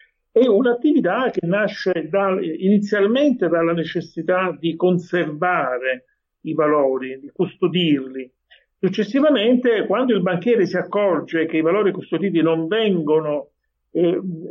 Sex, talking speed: male, 110 wpm